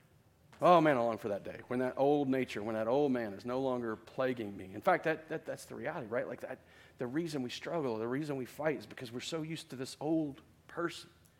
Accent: American